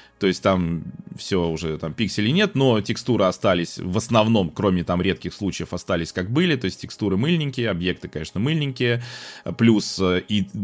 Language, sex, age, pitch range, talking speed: Russian, male, 20-39, 90-120 Hz, 165 wpm